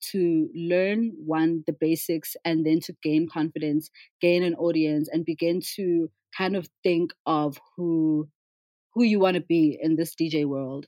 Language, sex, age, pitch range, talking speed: English, female, 20-39, 155-180 Hz, 165 wpm